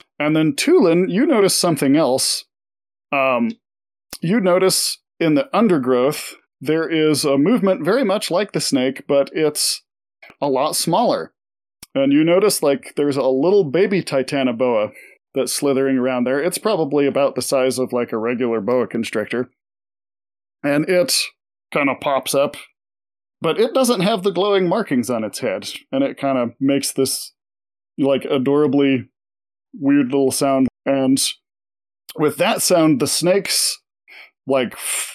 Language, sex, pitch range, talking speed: English, male, 130-185 Hz, 145 wpm